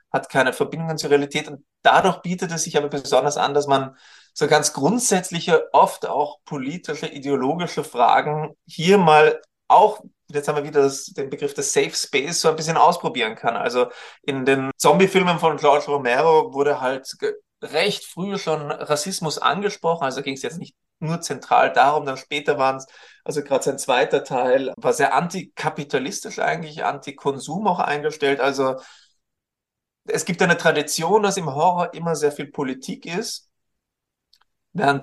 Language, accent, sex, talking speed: German, German, male, 160 wpm